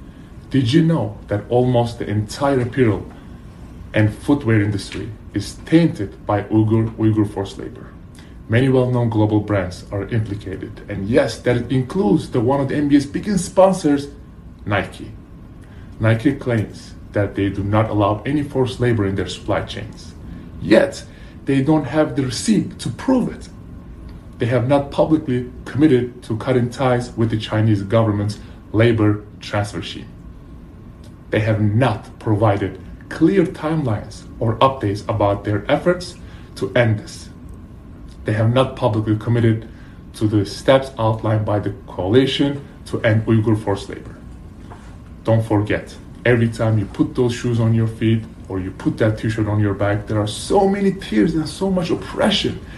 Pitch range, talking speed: 100-125 Hz, 150 wpm